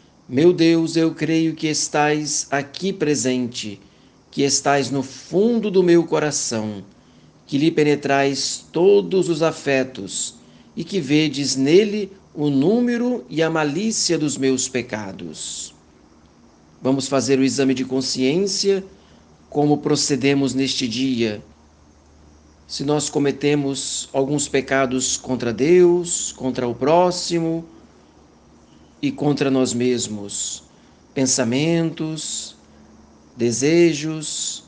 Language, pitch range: Portuguese, 125-160 Hz